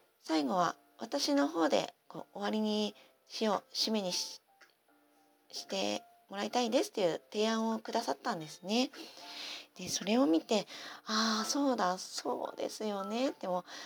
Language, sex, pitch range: Japanese, female, 180-260 Hz